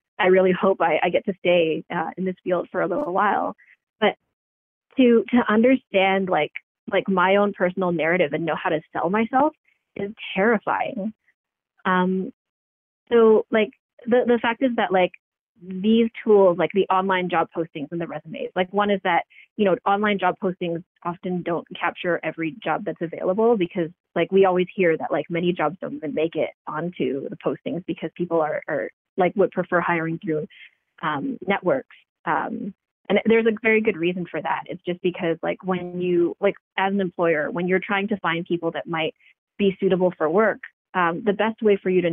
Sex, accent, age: female, American, 20-39